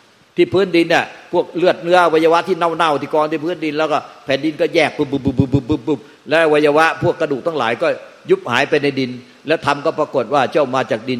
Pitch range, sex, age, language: 115-145 Hz, male, 60-79, Thai